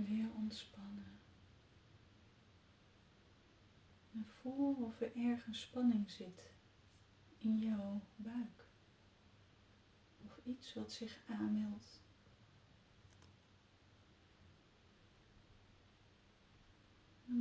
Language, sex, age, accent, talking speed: Dutch, female, 30-49, Dutch, 60 wpm